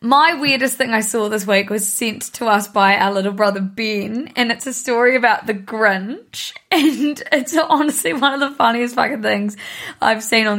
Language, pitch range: English, 230-325 Hz